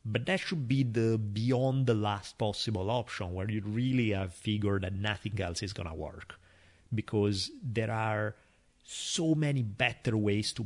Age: 30-49